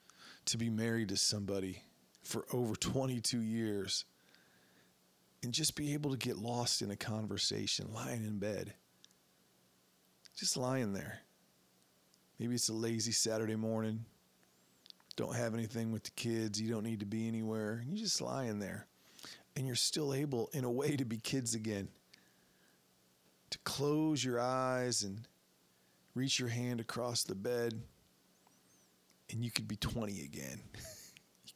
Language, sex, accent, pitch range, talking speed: English, male, American, 105-130 Hz, 145 wpm